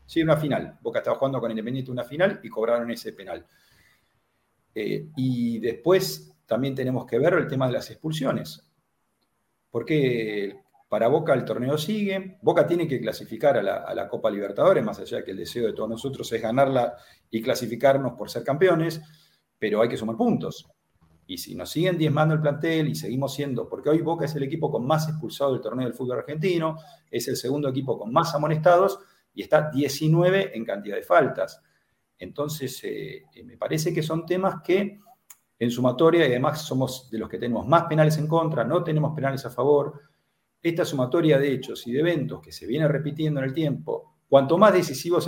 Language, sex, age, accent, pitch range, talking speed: Spanish, male, 40-59, Argentinian, 125-165 Hz, 190 wpm